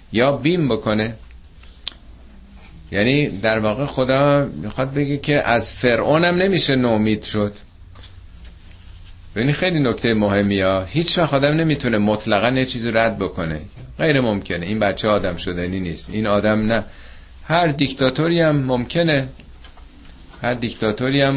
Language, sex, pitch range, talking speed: Persian, male, 95-140 Hz, 125 wpm